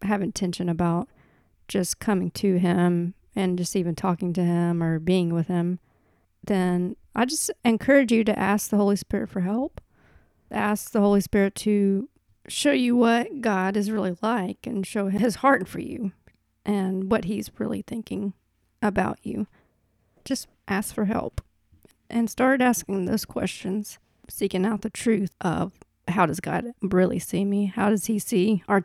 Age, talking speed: 40-59, 165 wpm